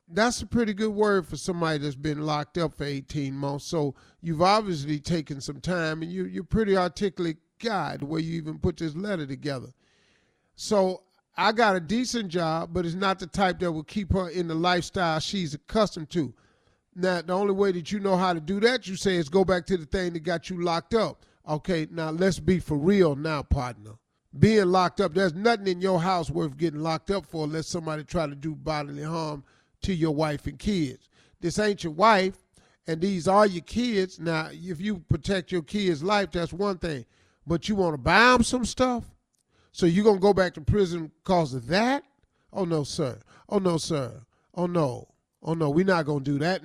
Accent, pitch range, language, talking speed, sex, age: American, 155-195 Hz, English, 210 wpm, male, 40-59